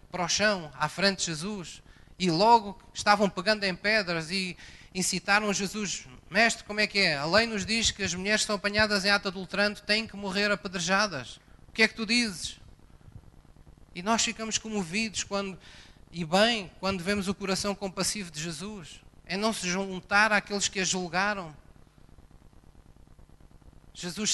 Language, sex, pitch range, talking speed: Portuguese, male, 150-200 Hz, 165 wpm